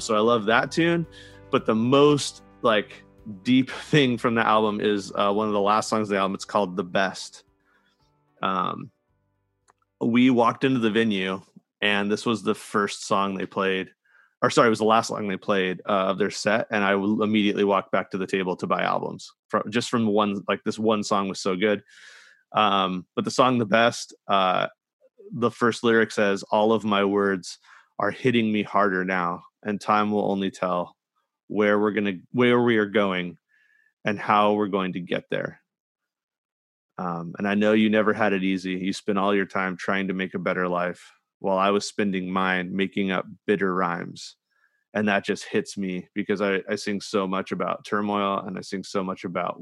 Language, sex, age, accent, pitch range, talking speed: English, male, 30-49, American, 95-110 Hz, 200 wpm